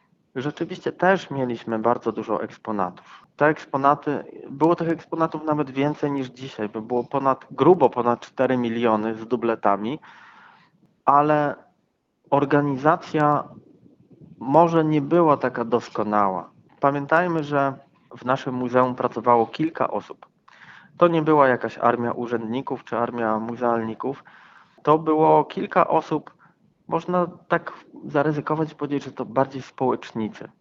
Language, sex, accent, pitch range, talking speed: Polish, male, native, 120-155 Hz, 120 wpm